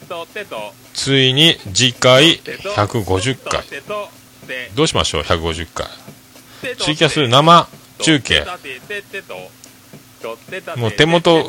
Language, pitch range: Japanese, 95-145 Hz